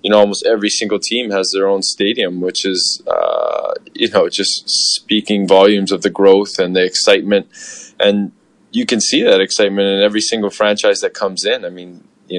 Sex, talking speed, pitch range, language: male, 195 wpm, 95-110 Hz, English